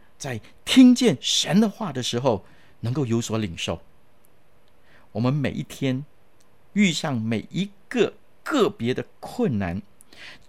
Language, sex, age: Chinese, male, 50-69